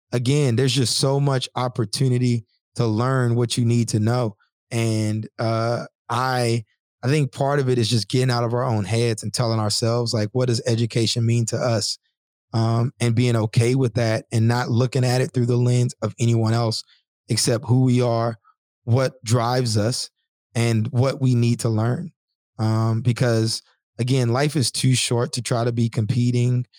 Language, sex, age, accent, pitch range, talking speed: English, male, 20-39, American, 115-130 Hz, 180 wpm